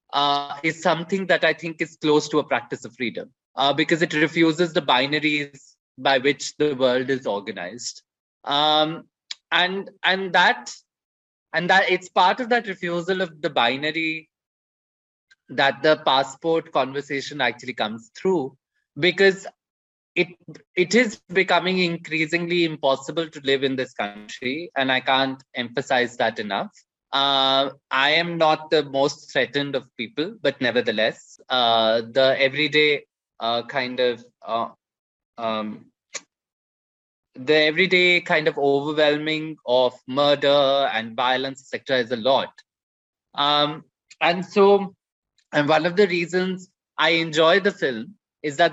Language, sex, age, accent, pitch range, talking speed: English, male, 20-39, Indian, 135-170 Hz, 135 wpm